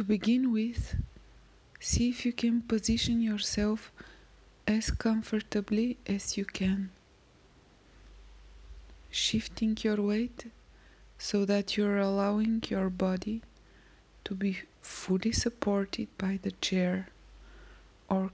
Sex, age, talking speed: female, 20-39, 105 wpm